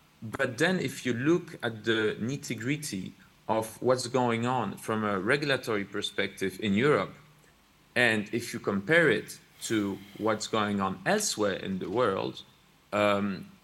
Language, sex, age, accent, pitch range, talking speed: English, male, 40-59, French, 110-145 Hz, 140 wpm